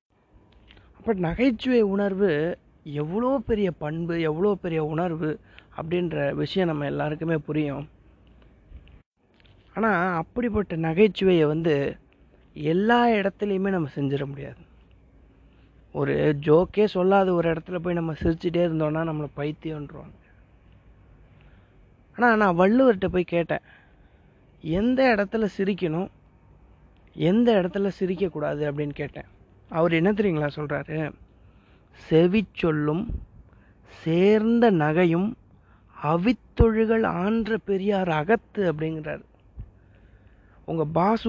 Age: 30-49